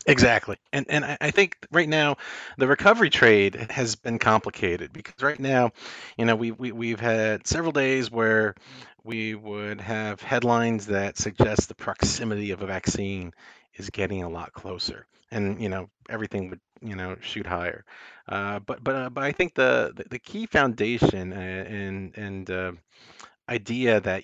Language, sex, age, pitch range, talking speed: English, male, 40-59, 95-120 Hz, 170 wpm